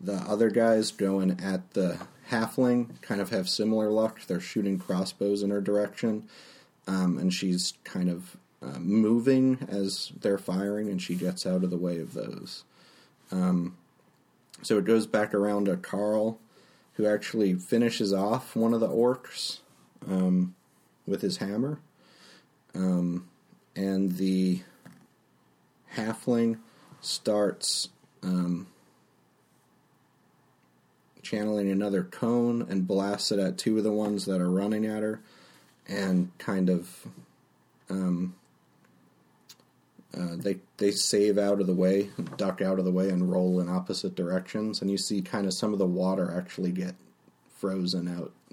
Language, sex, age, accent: English, male, 30-49, American